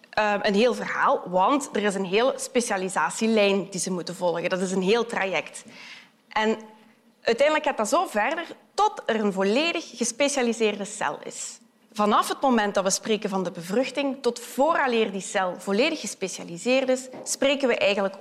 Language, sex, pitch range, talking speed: Dutch, female, 205-260 Hz, 165 wpm